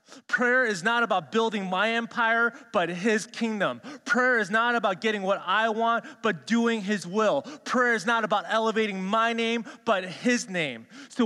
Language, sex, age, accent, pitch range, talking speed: English, male, 30-49, American, 180-235 Hz, 175 wpm